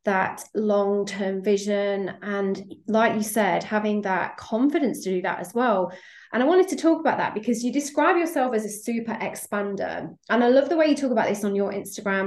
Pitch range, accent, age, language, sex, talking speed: 200-255 Hz, British, 20-39, English, female, 205 wpm